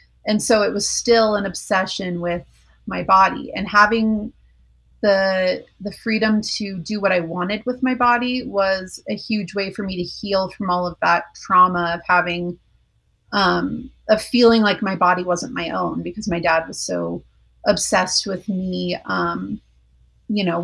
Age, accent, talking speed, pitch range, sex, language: 30-49, American, 170 wpm, 180-210 Hz, female, English